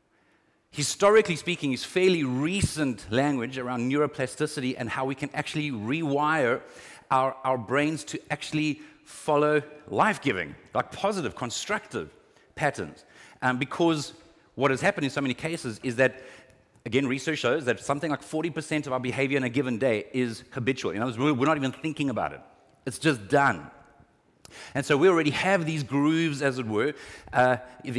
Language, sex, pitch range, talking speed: English, male, 135-165 Hz, 155 wpm